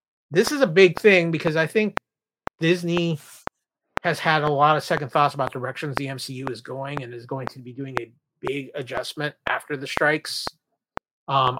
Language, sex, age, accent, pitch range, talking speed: English, male, 30-49, American, 140-165 Hz, 180 wpm